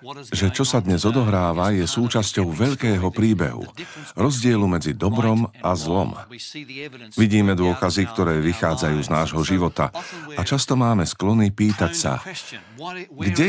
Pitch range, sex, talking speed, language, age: 85-115 Hz, male, 125 wpm, Slovak, 50-69